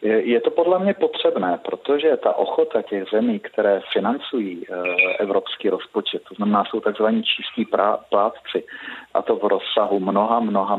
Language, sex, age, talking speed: Czech, male, 40-59, 145 wpm